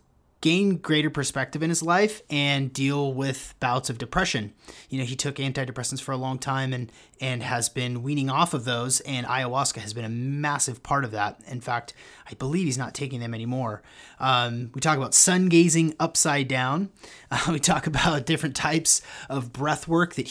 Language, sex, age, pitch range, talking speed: English, male, 30-49, 125-155 Hz, 190 wpm